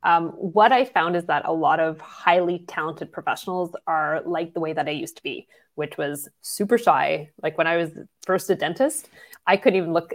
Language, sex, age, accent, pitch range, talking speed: English, female, 20-39, American, 165-205 Hz, 215 wpm